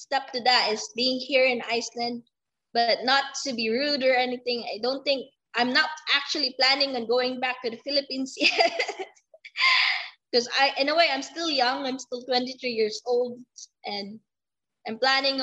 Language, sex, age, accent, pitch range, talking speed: Filipino, female, 20-39, native, 230-290 Hz, 175 wpm